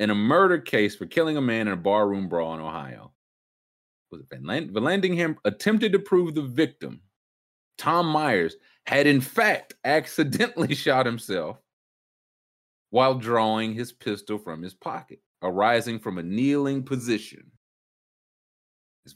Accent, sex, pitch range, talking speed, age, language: American, male, 100-140 Hz, 145 wpm, 30-49, English